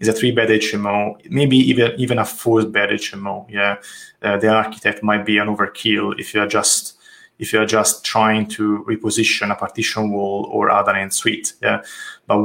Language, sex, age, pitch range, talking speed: English, male, 30-49, 105-115 Hz, 195 wpm